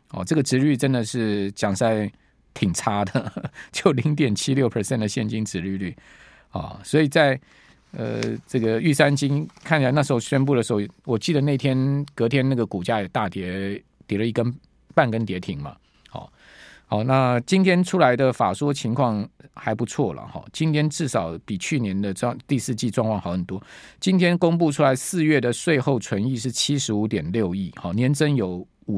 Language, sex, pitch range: Chinese, male, 105-145 Hz